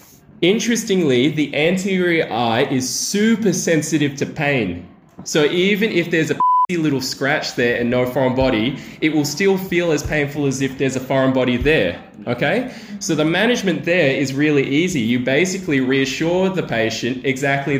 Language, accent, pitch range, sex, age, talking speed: English, Australian, 130-170 Hz, male, 20-39, 160 wpm